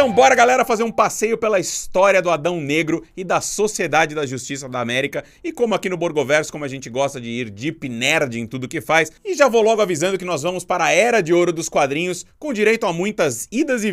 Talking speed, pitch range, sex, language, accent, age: 240 wpm, 120-185 Hz, male, Portuguese, Brazilian, 30-49